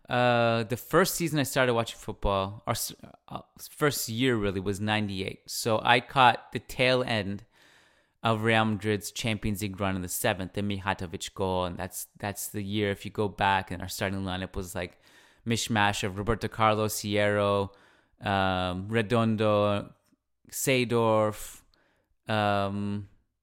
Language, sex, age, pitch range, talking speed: English, male, 20-39, 95-115 Hz, 145 wpm